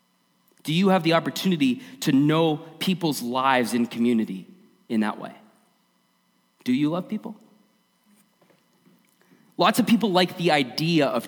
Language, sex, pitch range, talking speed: English, male, 130-205 Hz, 135 wpm